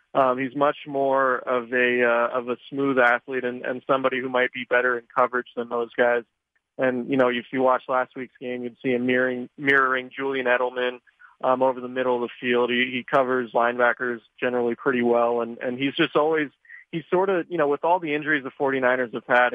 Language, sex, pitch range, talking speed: English, male, 125-135 Hz, 215 wpm